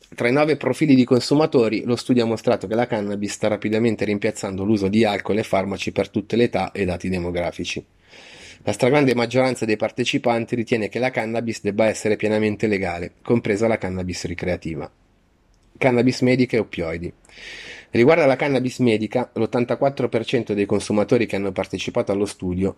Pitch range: 100-120 Hz